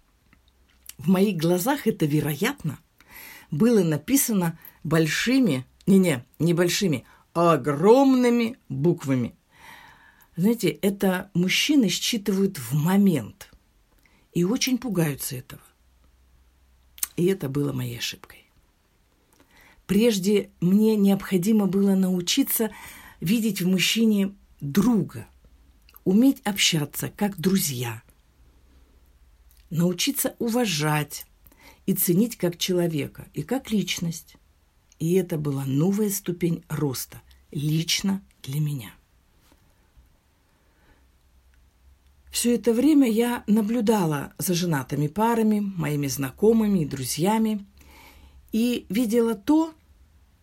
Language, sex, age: Russian, female, 50-69